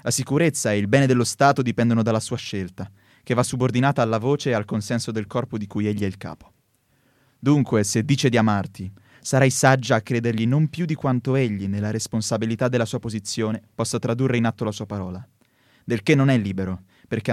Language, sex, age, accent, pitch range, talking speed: Italian, male, 20-39, native, 105-130 Hz, 205 wpm